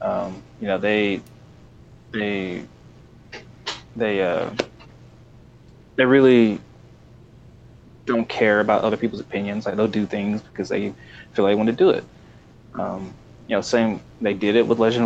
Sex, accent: male, American